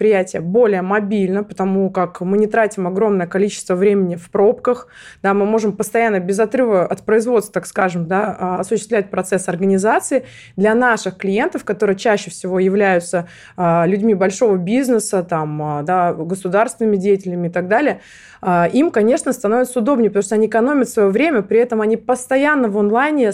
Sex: female